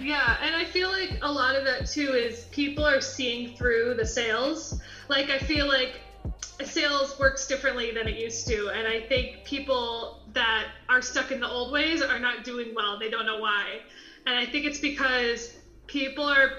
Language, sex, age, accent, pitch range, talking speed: English, female, 20-39, American, 230-275 Hz, 195 wpm